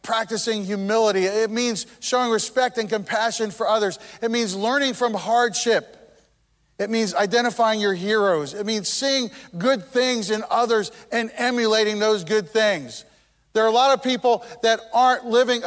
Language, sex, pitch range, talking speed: English, male, 195-250 Hz, 155 wpm